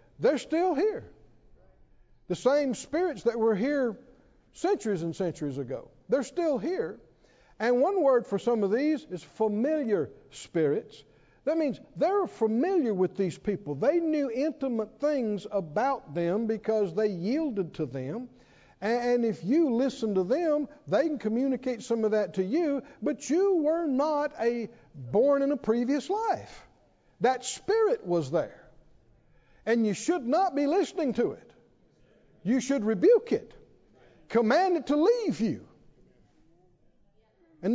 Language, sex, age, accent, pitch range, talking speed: English, male, 60-79, American, 205-295 Hz, 145 wpm